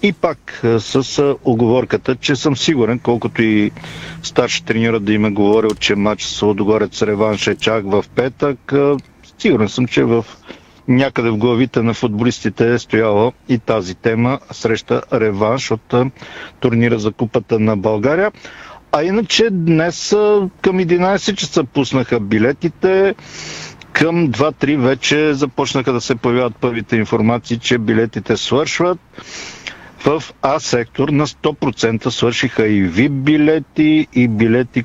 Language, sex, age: Bulgarian, male, 50-69